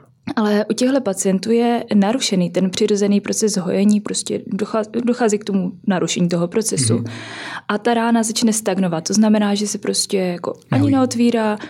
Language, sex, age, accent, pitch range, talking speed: Czech, female, 20-39, native, 175-205 Hz, 155 wpm